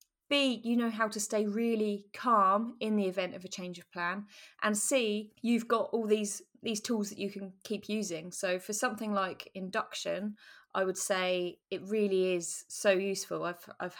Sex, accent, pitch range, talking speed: female, British, 180-210 Hz, 190 wpm